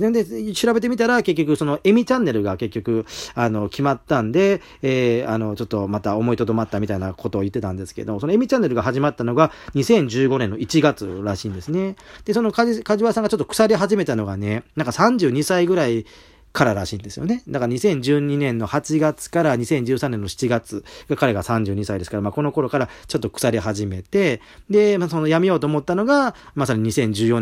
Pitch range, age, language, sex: 110-155 Hz, 40-59, Japanese, male